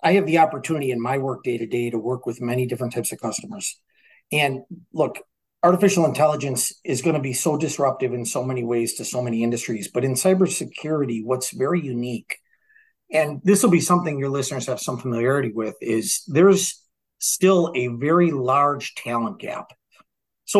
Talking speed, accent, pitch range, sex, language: 180 wpm, American, 125-175 Hz, male, English